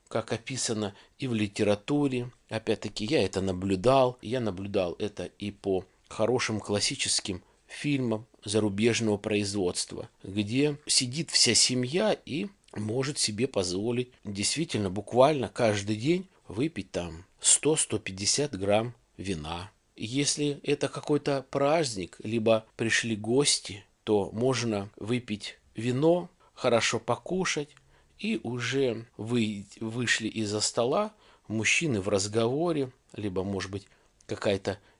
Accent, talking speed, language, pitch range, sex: native, 110 wpm, Russian, 105-130 Hz, male